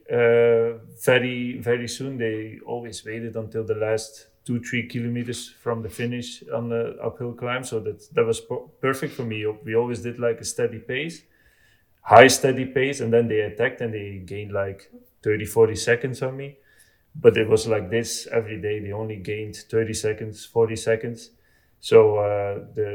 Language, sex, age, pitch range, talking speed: English, male, 30-49, 110-125 Hz, 180 wpm